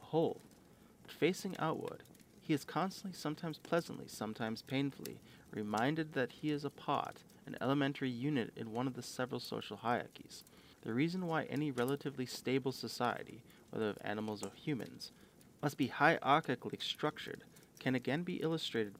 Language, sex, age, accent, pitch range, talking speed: English, male, 30-49, American, 110-150 Hz, 145 wpm